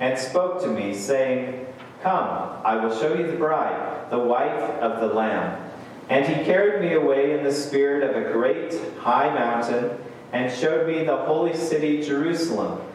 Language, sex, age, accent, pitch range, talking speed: English, male, 40-59, American, 125-165 Hz, 170 wpm